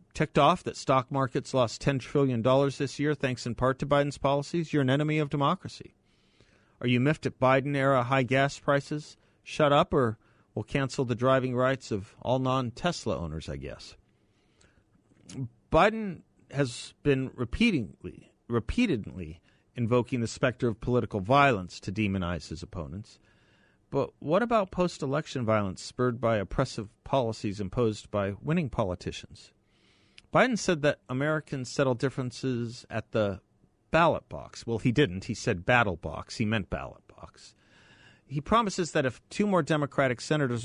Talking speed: 150 wpm